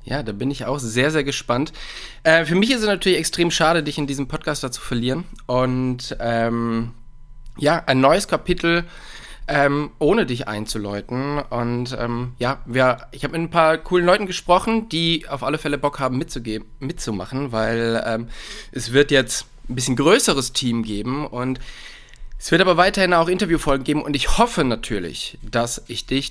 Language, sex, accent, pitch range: German, male, German, 120-150 Hz